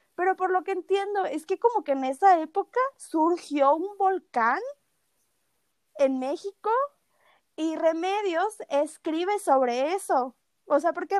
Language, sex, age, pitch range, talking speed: Spanish, female, 20-39, 265-360 Hz, 135 wpm